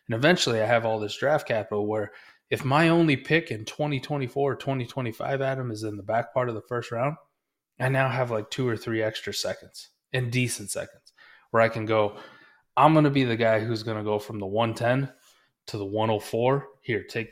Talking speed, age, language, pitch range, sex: 210 wpm, 20-39, English, 105-130 Hz, male